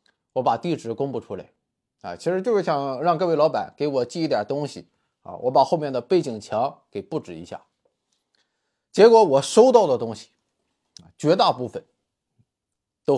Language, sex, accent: Chinese, male, native